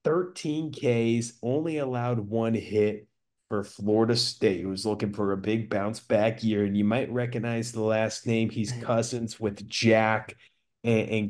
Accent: American